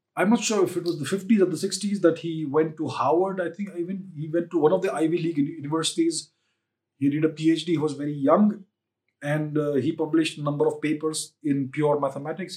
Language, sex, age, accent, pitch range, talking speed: English, male, 30-49, Indian, 145-180 Hz, 230 wpm